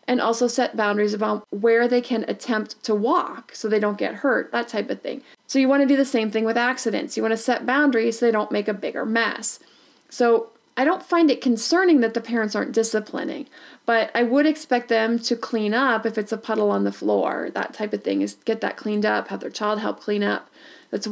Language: English